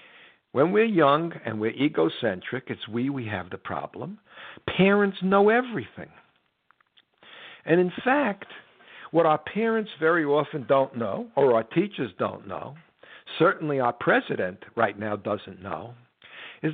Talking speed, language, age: 135 wpm, English, 60-79